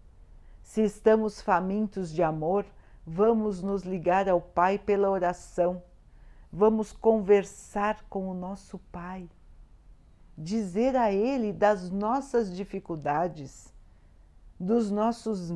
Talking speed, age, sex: 100 wpm, 50-69, female